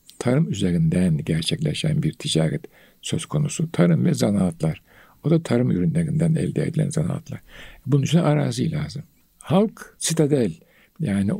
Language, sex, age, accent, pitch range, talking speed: Turkish, male, 60-79, native, 120-170 Hz, 125 wpm